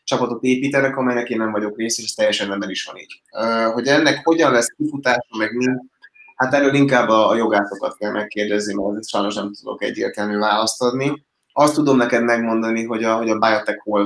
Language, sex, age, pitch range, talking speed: Hungarian, male, 20-39, 105-120 Hz, 190 wpm